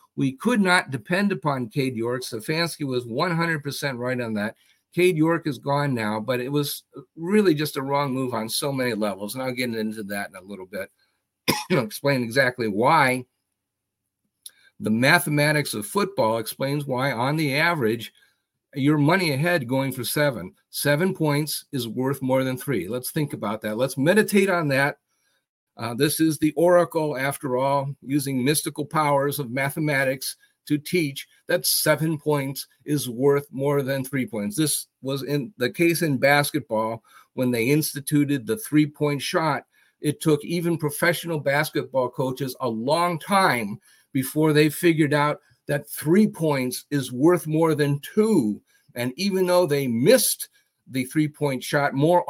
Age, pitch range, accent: 50-69, 130-155 Hz, American